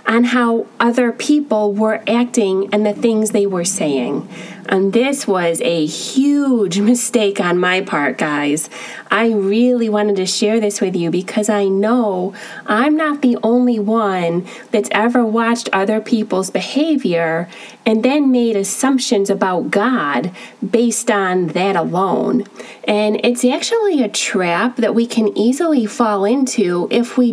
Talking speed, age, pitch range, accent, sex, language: 145 wpm, 30-49, 195-240 Hz, American, female, English